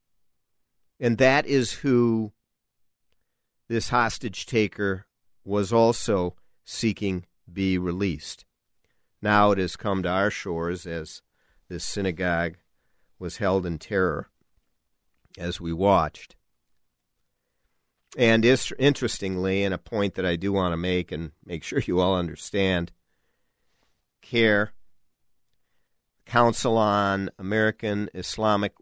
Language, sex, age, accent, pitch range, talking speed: English, male, 50-69, American, 95-115 Hz, 105 wpm